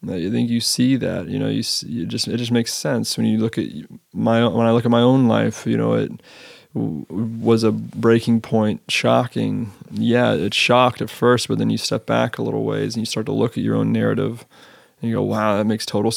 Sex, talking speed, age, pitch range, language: male, 235 wpm, 20-39, 110-120 Hz, English